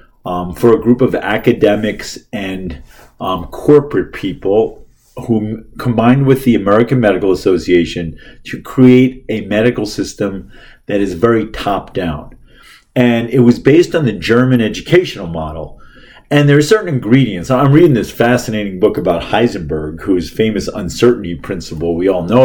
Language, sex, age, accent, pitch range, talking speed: English, male, 40-59, American, 95-125 Hz, 145 wpm